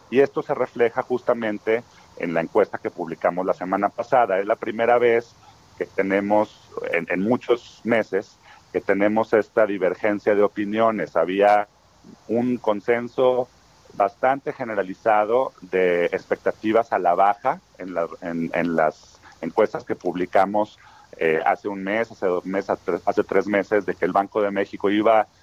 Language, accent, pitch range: Spanish, Mexican, 95-120 Hz